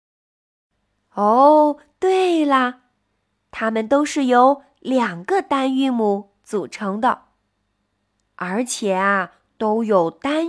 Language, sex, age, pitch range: Chinese, female, 20-39, 210-310 Hz